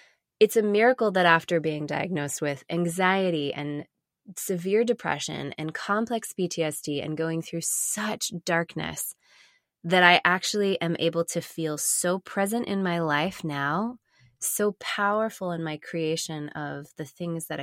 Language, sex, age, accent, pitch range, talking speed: English, female, 20-39, American, 155-200 Hz, 145 wpm